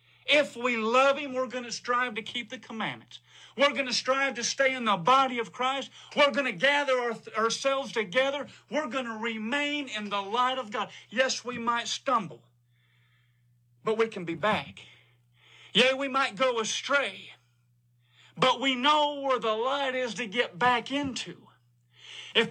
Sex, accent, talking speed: male, American, 170 wpm